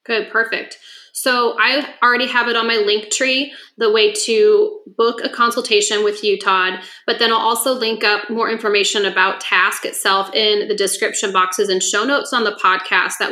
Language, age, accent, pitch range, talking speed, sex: English, 20-39, American, 205-275 Hz, 190 wpm, female